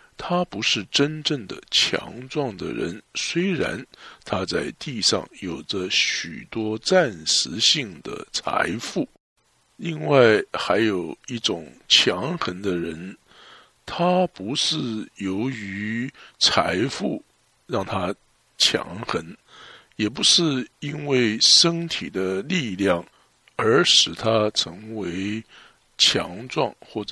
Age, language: 60-79, English